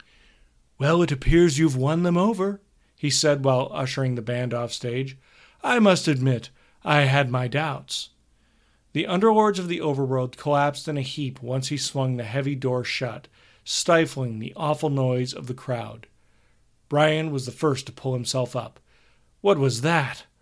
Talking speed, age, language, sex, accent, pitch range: 165 wpm, 40-59, English, male, American, 125-165 Hz